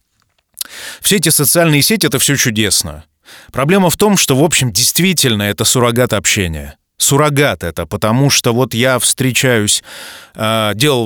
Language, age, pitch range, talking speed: Russian, 30-49, 110-140 Hz, 135 wpm